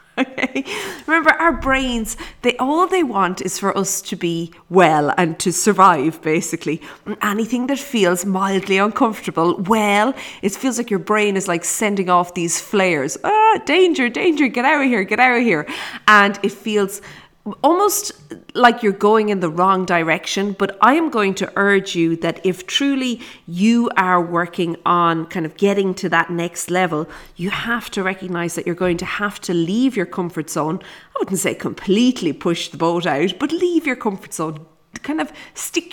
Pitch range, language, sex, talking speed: 170-230 Hz, English, female, 180 wpm